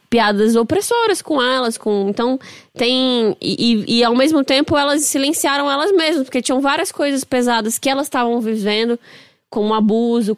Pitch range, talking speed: 200-265 Hz, 160 wpm